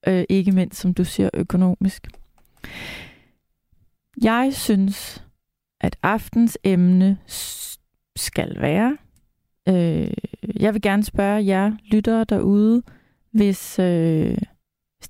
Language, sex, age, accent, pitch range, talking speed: Danish, female, 30-49, native, 190-225 Hz, 95 wpm